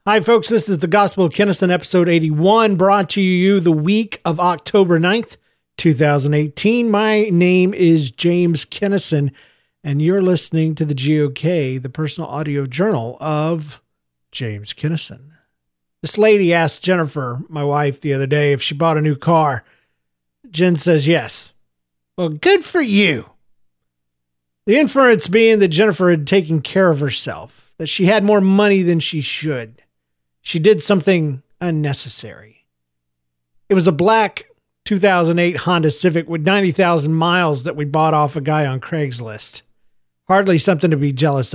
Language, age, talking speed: English, 40-59, 150 wpm